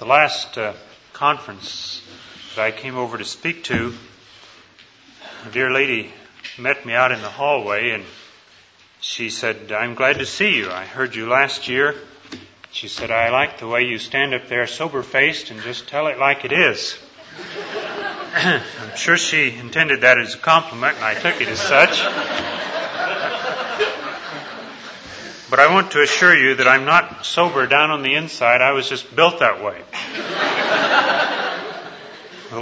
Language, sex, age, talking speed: English, male, 30-49, 160 wpm